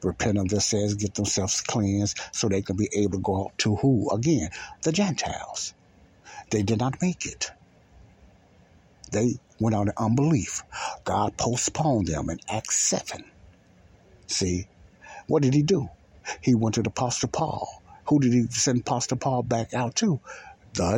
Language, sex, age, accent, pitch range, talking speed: English, male, 60-79, American, 95-120 Hz, 165 wpm